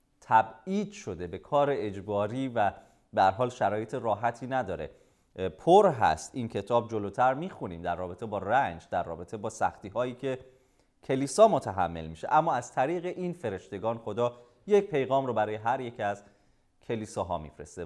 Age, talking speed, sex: 30-49, 150 wpm, male